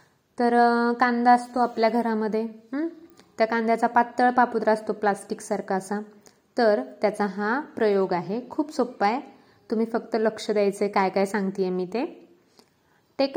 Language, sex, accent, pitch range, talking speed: Marathi, female, native, 200-240 Hz, 135 wpm